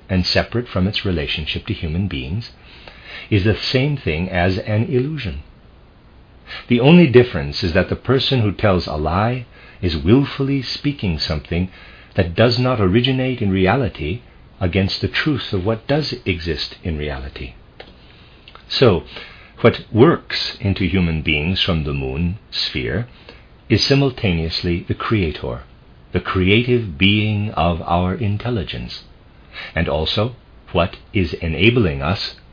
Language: English